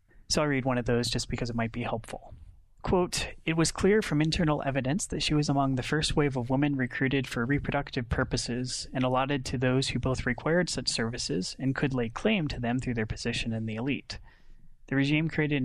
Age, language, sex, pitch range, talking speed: 30-49, English, male, 120-145 Hz, 215 wpm